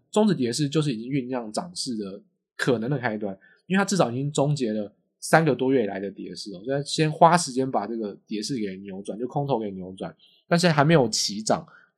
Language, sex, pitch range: Chinese, male, 115-165 Hz